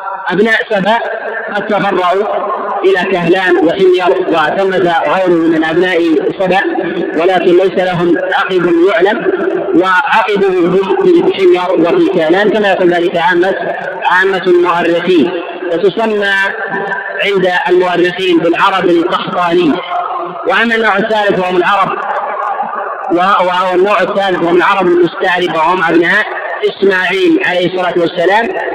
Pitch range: 180-210 Hz